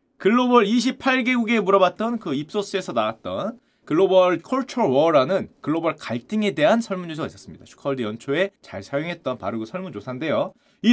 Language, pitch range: Korean, 170-250 Hz